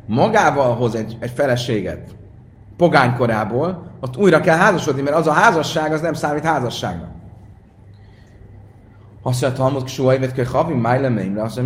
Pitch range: 105-150 Hz